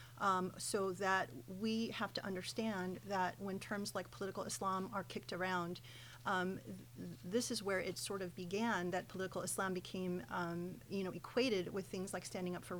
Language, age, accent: English, 30-49, American